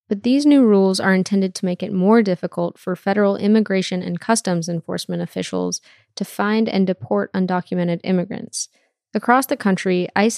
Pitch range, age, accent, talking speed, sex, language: 180-215 Hz, 20-39, American, 160 wpm, female, English